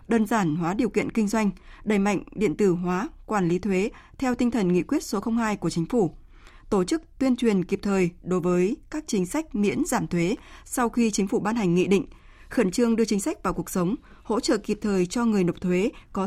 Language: Vietnamese